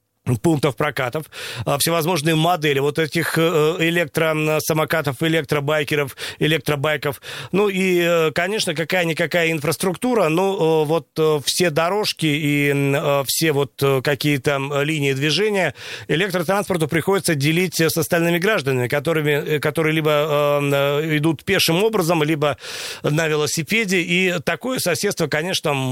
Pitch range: 145-170 Hz